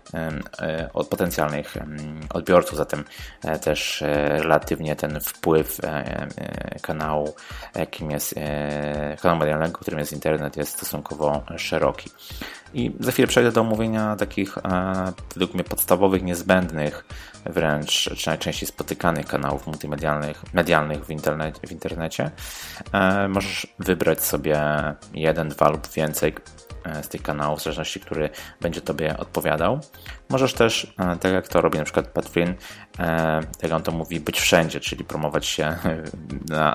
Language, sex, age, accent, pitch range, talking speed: Polish, male, 20-39, native, 75-90 Hz, 120 wpm